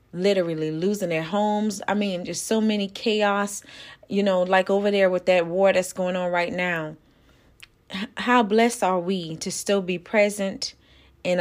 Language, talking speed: English, 170 wpm